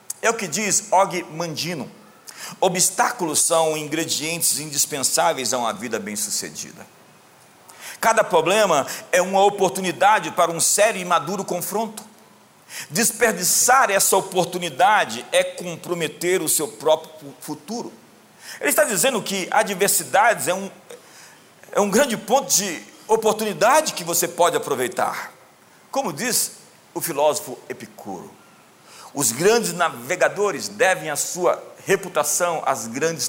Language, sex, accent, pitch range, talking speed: Portuguese, male, Brazilian, 160-210 Hz, 115 wpm